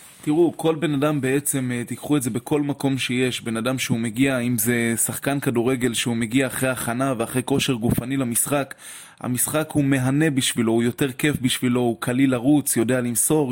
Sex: male